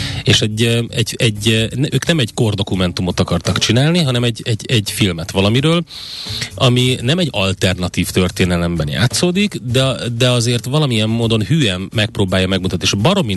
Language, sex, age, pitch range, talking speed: Hungarian, male, 30-49, 95-120 Hz, 145 wpm